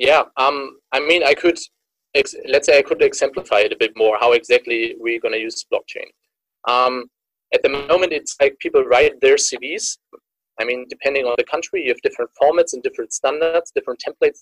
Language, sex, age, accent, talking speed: English, male, 20-39, German, 200 wpm